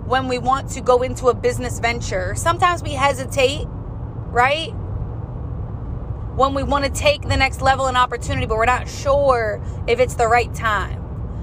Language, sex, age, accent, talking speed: English, female, 20-39, American, 170 wpm